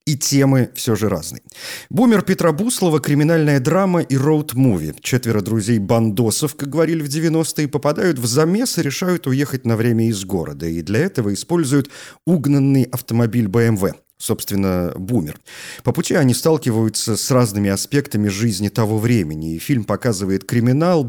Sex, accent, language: male, native, Russian